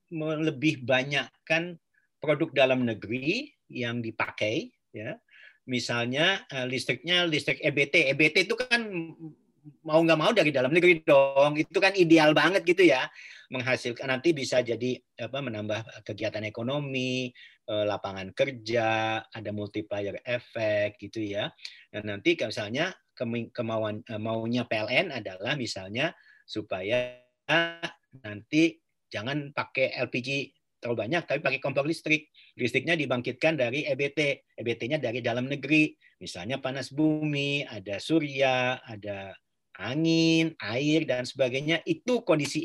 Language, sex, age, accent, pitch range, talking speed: Indonesian, male, 40-59, native, 125-160 Hz, 115 wpm